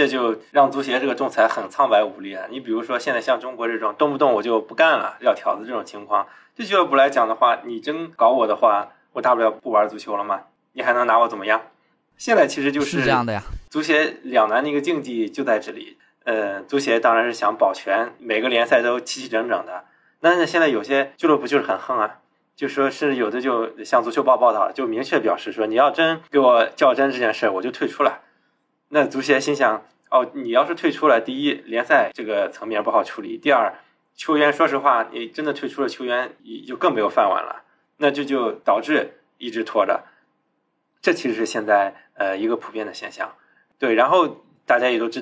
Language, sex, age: Chinese, male, 20-39